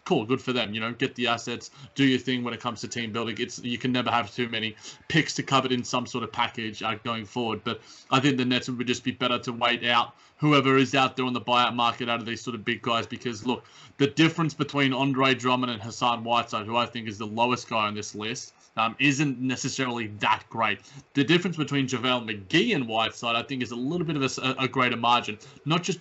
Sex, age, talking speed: male, 20-39, 245 wpm